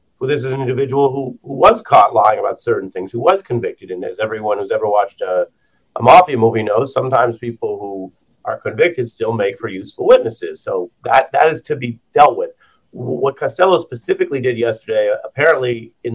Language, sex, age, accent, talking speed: English, male, 40-59, American, 195 wpm